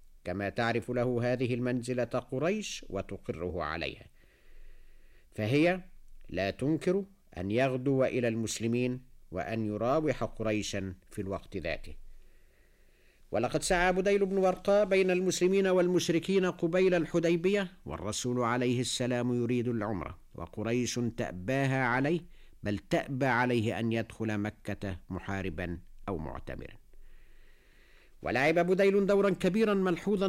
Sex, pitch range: male, 95-145 Hz